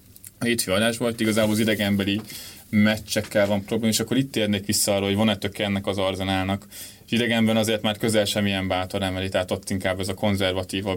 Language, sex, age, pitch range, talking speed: Hungarian, male, 20-39, 95-110 Hz, 180 wpm